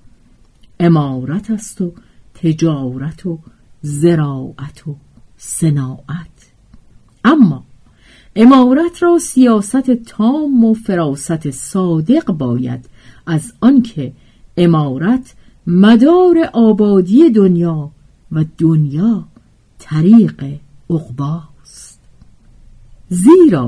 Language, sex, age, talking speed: Persian, female, 50-69, 70 wpm